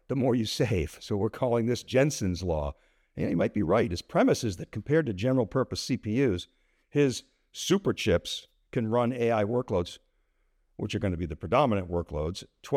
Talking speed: 175 wpm